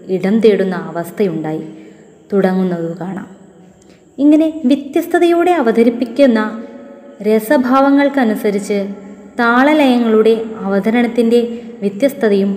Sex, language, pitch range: female, Malayalam, 195-260 Hz